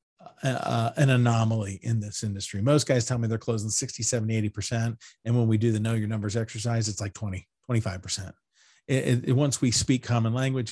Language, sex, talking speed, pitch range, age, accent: English, male, 185 wpm, 110-130 Hz, 40-59, American